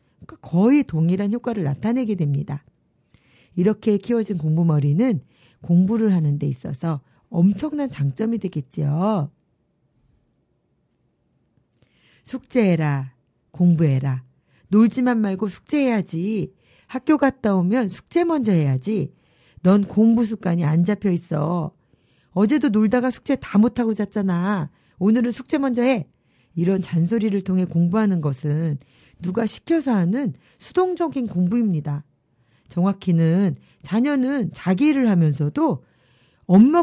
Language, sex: Korean, female